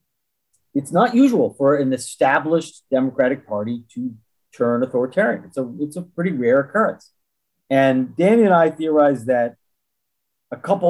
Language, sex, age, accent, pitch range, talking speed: English, male, 50-69, American, 120-180 Hz, 140 wpm